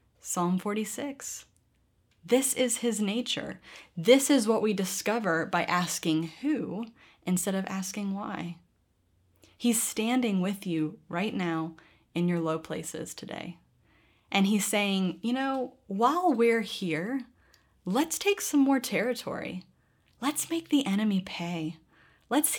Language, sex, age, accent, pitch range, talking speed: English, female, 20-39, American, 165-225 Hz, 130 wpm